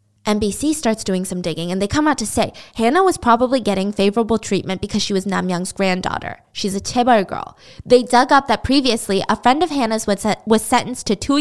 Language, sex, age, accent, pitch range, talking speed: English, female, 10-29, American, 200-295 Hz, 215 wpm